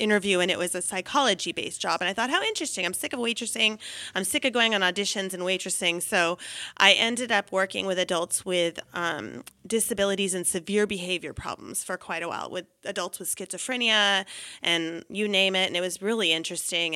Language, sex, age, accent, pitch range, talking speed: English, female, 30-49, American, 175-210 Hz, 195 wpm